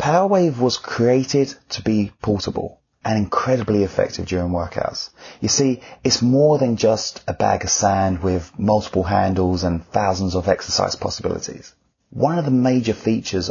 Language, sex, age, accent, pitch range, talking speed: English, male, 30-49, British, 90-115 Hz, 150 wpm